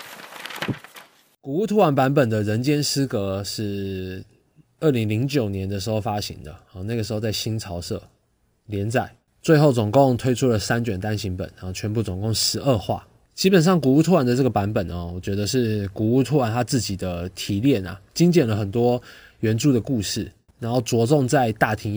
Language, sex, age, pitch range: Chinese, male, 20-39, 100-130 Hz